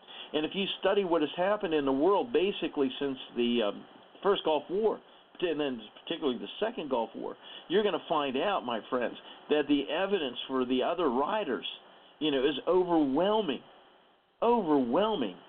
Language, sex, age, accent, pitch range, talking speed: English, male, 50-69, American, 125-195 Hz, 165 wpm